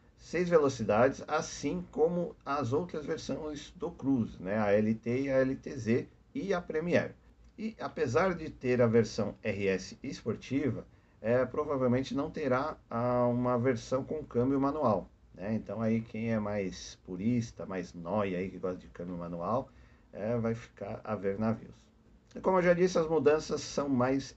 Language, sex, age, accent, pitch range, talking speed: Portuguese, male, 50-69, Brazilian, 110-145 Hz, 150 wpm